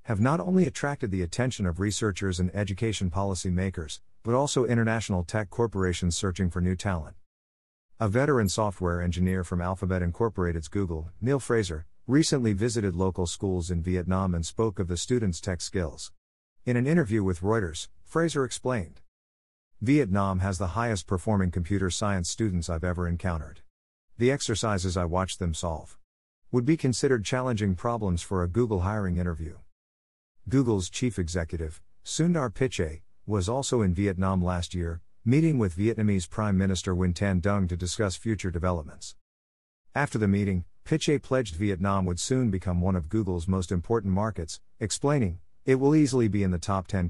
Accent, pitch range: American, 90-110 Hz